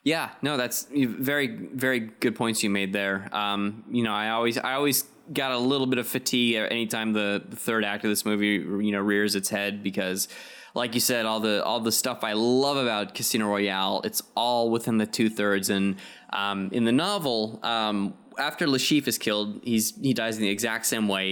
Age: 20-39